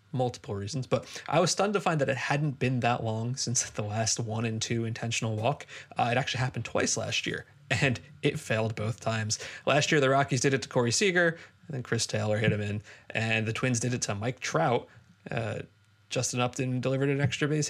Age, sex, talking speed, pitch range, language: 20-39, male, 220 wpm, 115-145 Hz, English